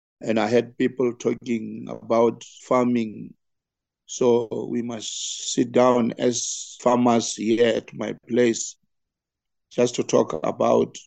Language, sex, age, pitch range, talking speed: English, male, 50-69, 110-120 Hz, 120 wpm